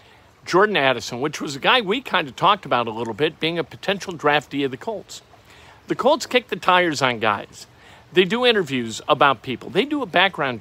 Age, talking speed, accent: 50-69, 210 wpm, American